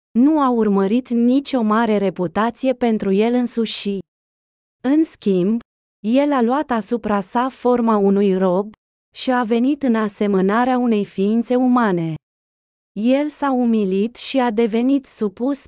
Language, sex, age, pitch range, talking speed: Romanian, female, 20-39, 205-245 Hz, 130 wpm